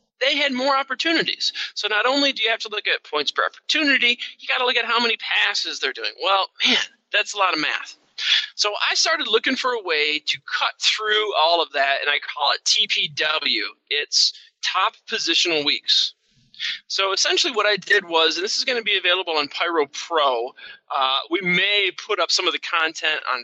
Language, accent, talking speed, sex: English, American, 205 wpm, male